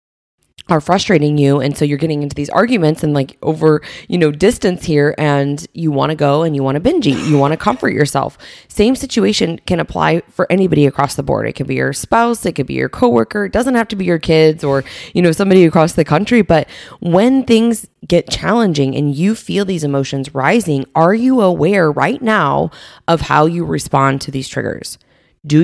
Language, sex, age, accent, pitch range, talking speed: English, female, 20-39, American, 145-190 Hz, 210 wpm